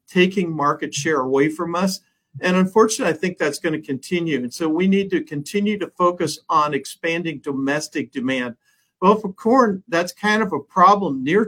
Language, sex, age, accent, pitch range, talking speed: English, male, 50-69, American, 140-180 Hz, 185 wpm